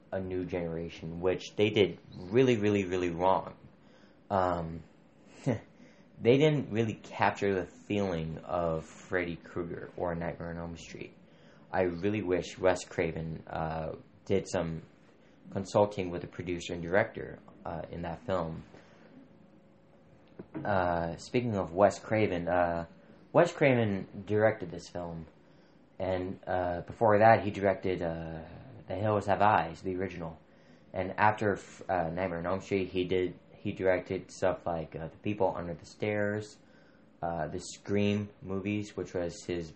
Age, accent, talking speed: 30-49, American, 140 wpm